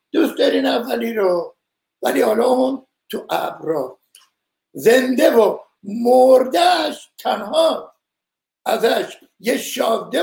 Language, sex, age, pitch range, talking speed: Persian, male, 60-79, 225-325 Hz, 95 wpm